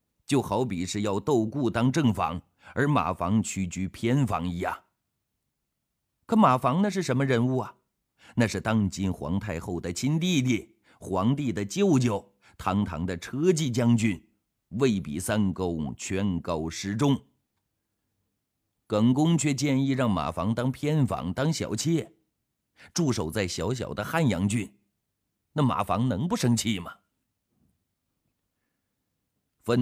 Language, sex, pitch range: Chinese, male, 90-120 Hz